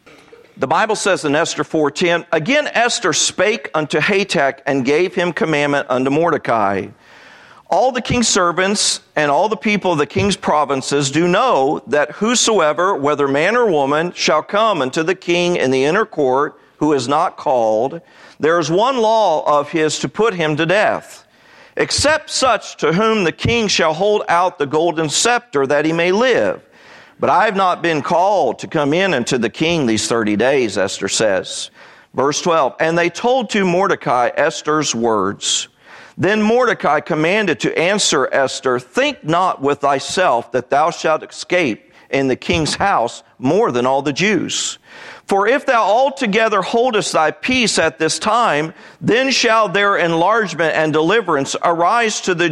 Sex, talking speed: male, 165 wpm